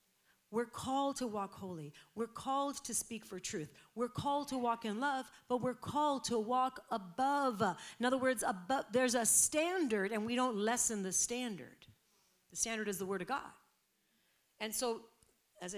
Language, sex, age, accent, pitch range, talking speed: English, female, 50-69, American, 165-230 Hz, 175 wpm